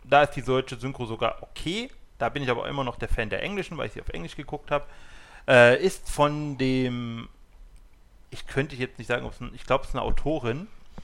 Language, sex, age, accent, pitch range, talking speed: German, male, 40-59, German, 115-165 Hz, 210 wpm